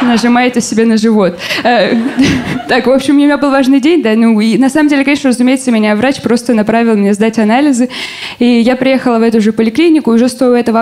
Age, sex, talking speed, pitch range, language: 20-39, female, 210 wpm, 220-265 Hz, Russian